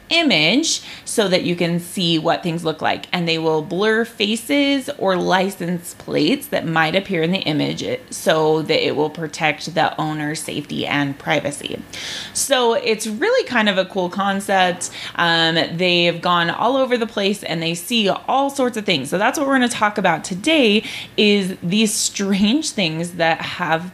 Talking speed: 180 wpm